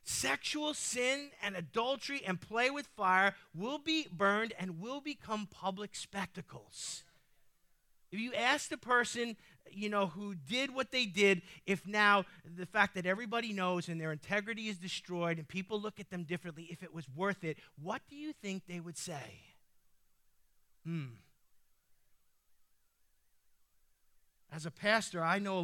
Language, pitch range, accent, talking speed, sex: English, 155-200 Hz, American, 150 wpm, male